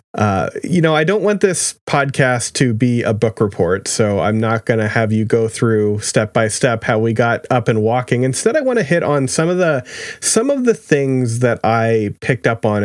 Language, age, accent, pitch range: English, 30-49, American, 110-150 Hz